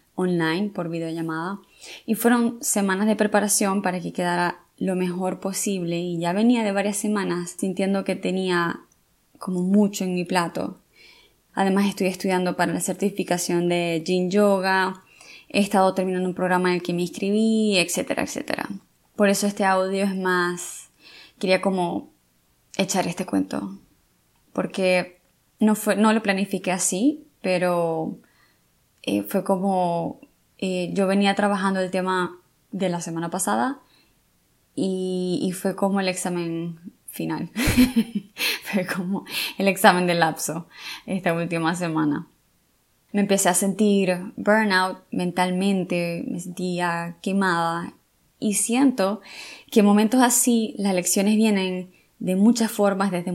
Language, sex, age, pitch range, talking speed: Spanish, female, 20-39, 180-205 Hz, 135 wpm